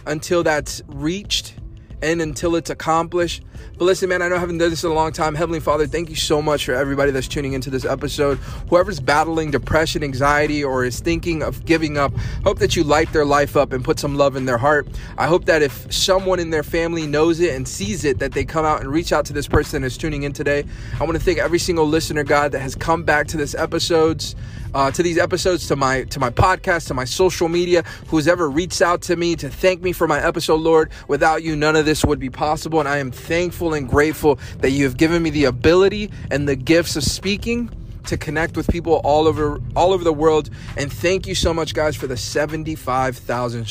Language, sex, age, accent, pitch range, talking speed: English, male, 20-39, American, 130-165 Hz, 235 wpm